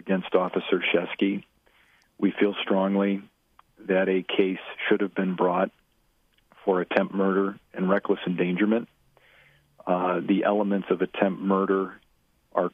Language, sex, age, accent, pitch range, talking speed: English, male, 40-59, American, 90-100 Hz, 120 wpm